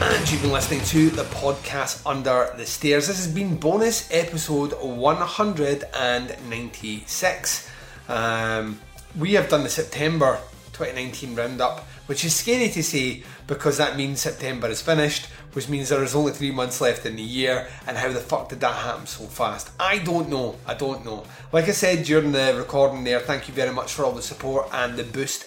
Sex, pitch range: male, 130-160 Hz